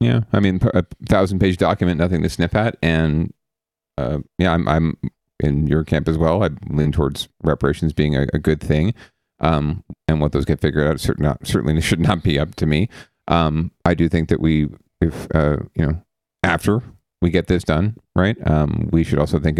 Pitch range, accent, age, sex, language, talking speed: 75-90 Hz, American, 40-59, male, English, 205 wpm